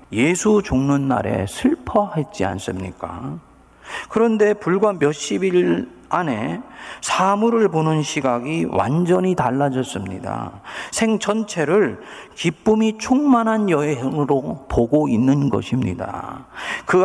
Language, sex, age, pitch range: Korean, male, 40-59, 115-185 Hz